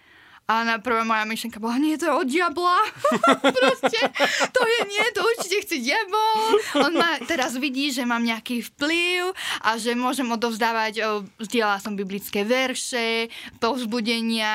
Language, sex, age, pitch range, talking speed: Slovak, female, 20-39, 205-255 Hz, 150 wpm